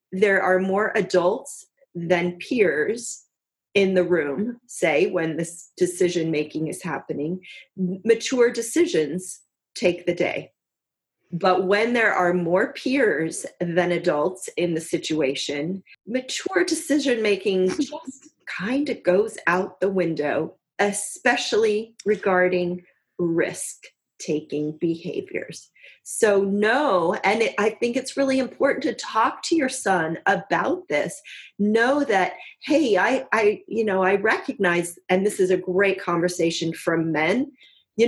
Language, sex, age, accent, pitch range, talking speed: English, female, 30-49, American, 175-225 Hz, 125 wpm